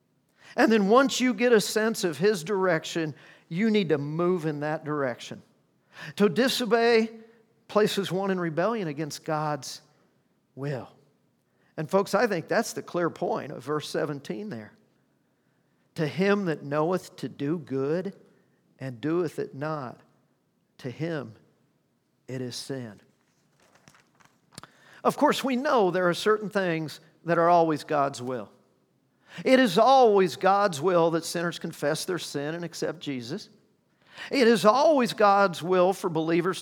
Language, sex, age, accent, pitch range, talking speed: English, male, 50-69, American, 150-200 Hz, 145 wpm